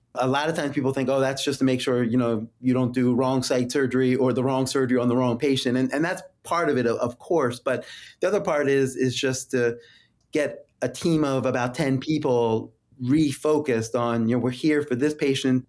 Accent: American